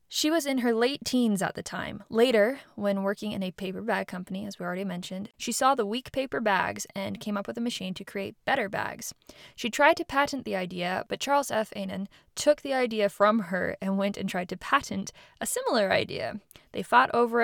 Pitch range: 195-240 Hz